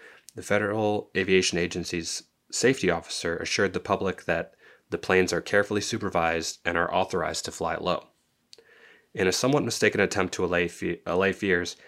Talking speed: 155 wpm